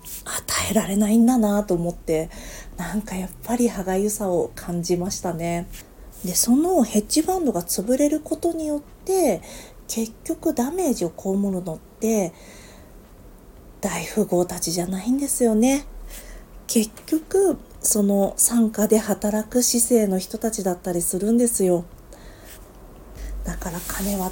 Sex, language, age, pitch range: female, Japanese, 40-59, 175-255 Hz